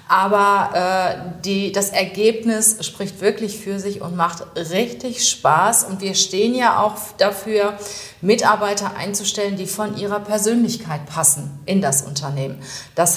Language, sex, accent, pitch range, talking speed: German, female, German, 170-205 Hz, 135 wpm